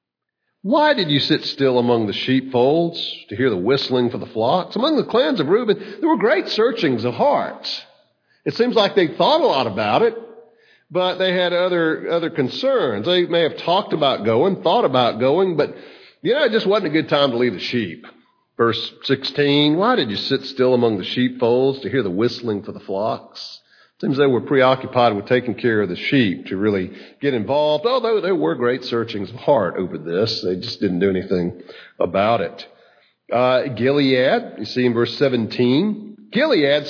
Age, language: 50-69, English